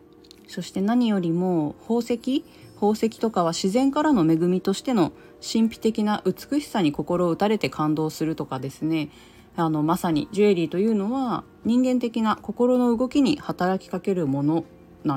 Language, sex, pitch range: Japanese, female, 160-225 Hz